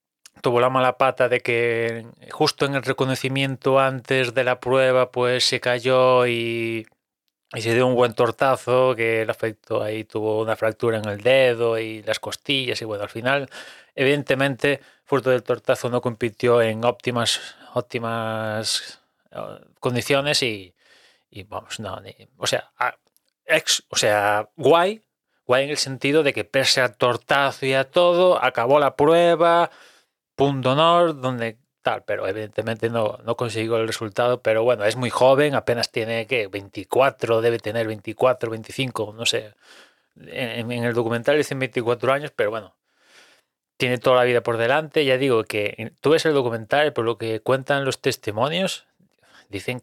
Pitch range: 115-135 Hz